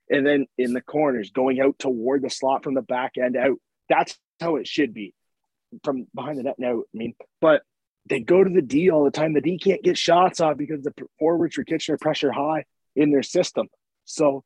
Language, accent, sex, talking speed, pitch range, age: English, American, male, 220 wpm, 135-175 Hz, 30-49